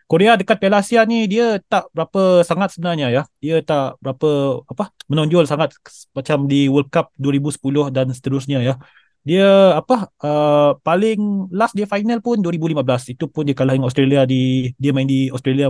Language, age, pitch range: Malay, 20-39, 145-190 Hz